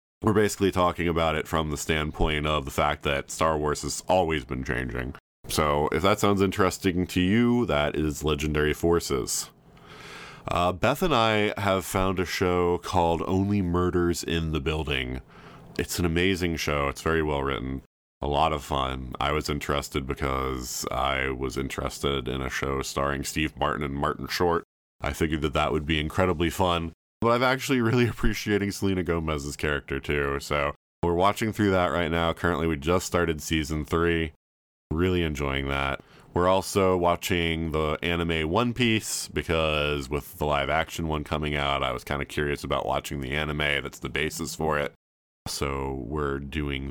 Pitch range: 70-90 Hz